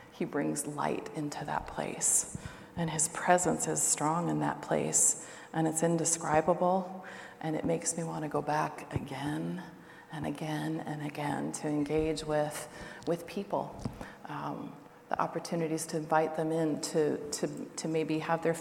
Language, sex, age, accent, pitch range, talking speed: English, female, 40-59, American, 155-165 Hz, 150 wpm